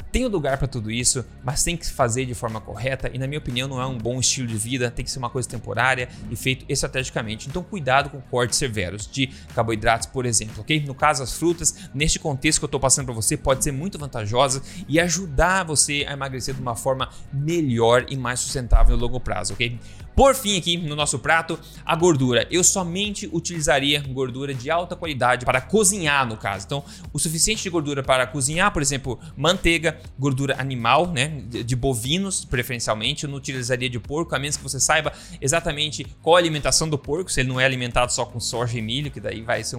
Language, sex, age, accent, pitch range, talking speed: Portuguese, male, 20-39, Brazilian, 125-160 Hz, 210 wpm